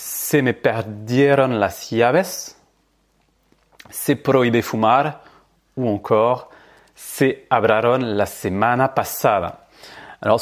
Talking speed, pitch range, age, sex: 90 wpm, 120-180 Hz, 30-49, male